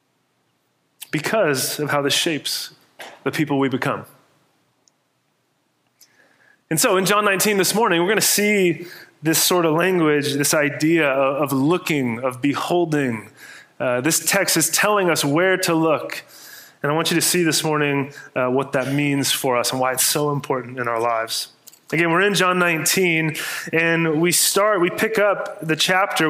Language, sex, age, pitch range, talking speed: English, male, 20-39, 155-195 Hz, 170 wpm